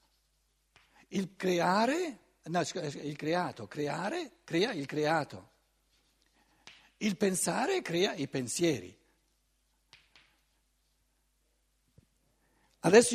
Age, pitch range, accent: 60-79, 155-215 Hz, native